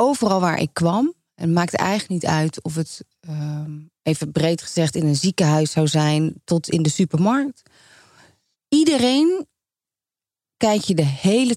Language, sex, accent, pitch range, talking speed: Dutch, female, Dutch, 145-175 Hz, 145 wpm